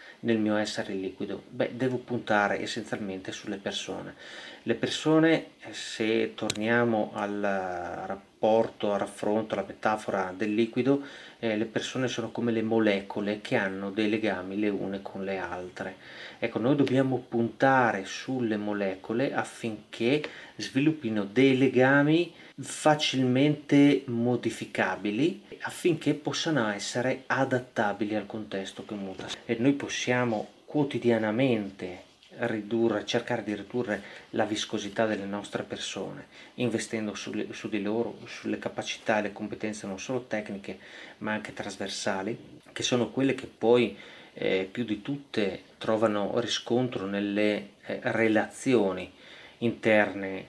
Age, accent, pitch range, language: 30-49, native, 105-125 Hz, Italian